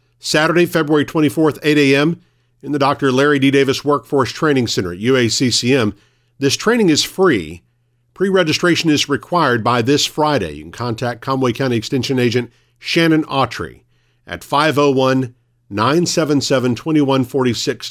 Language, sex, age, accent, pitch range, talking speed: English, male, 50-69, American, 115-145 Hz, 125 wpm